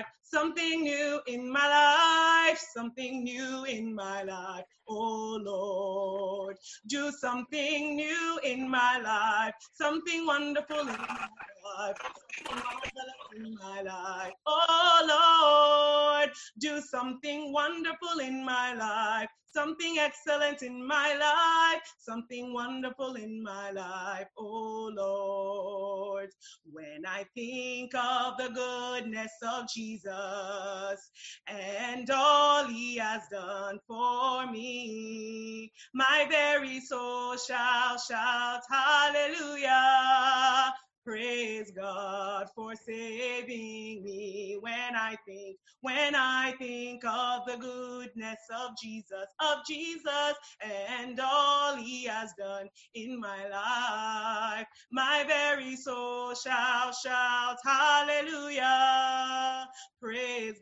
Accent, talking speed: American, 100 wpm